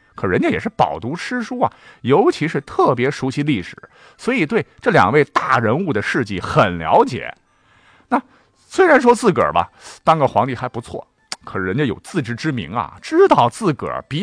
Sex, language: male, Chinese